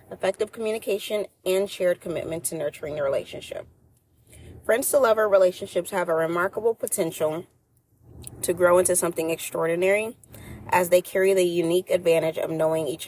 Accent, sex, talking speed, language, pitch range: American, female, 140 wpm, English, 160-195 Hz